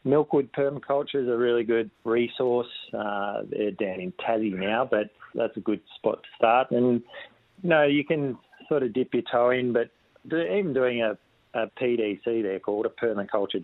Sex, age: male, 40-59